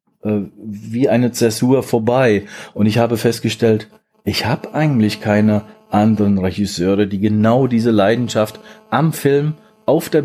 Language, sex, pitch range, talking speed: German, male, 105-120 Hz, 130 wpm